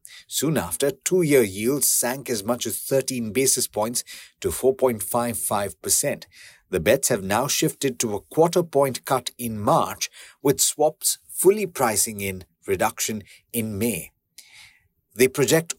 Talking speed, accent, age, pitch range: 130 wpm, Indian, 50-69, 105-145 Hz